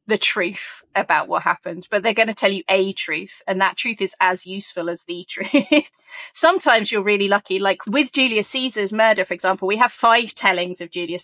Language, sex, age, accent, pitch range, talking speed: English, female, 20-39, British, 185-225 Hz, 210 wpm